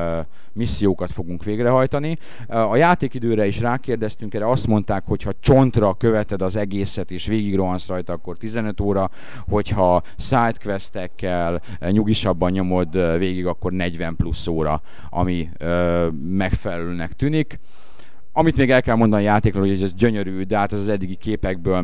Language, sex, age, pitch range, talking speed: Hungarian, male, 30-49, 85-105 Hz, 135 wpm